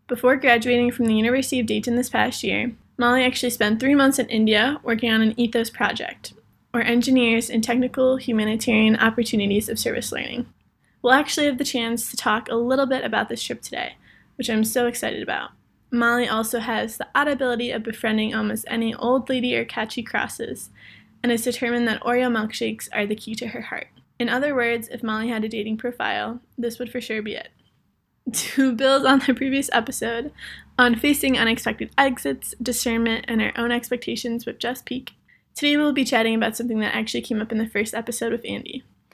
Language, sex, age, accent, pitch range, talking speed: English, female, 20-39, American, 225-255 Hz, 195 wpm